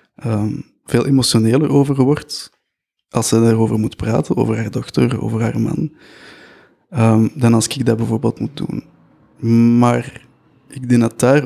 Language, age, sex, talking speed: Dutch, 20-39, male, 150 wpm